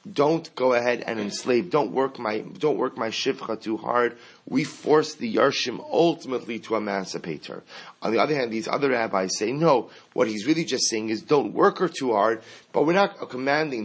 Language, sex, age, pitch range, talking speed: English, male, 30-49, 105-140 Hz, 200 wpm